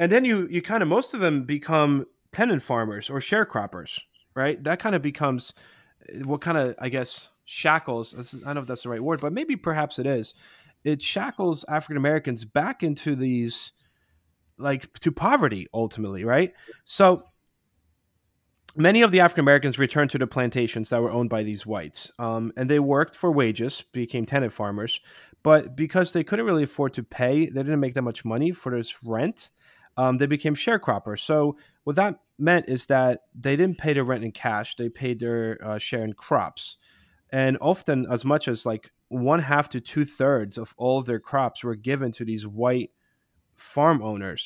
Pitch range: 115-150 Hz